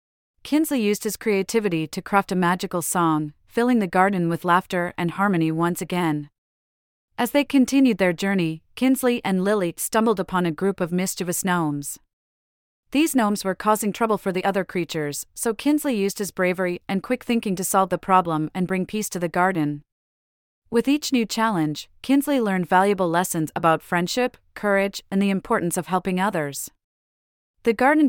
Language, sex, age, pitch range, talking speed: English, female, 30-49, 165-210 Hz, 170 wpm